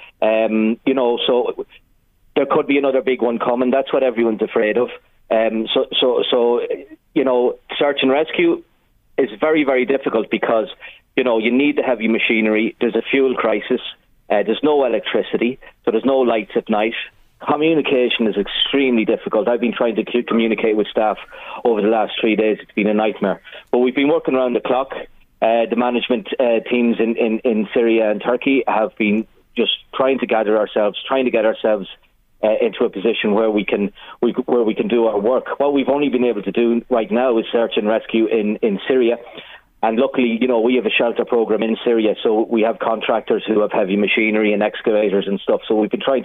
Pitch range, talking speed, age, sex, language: 110-130 Hz, 205 wpm, 30-49, male, English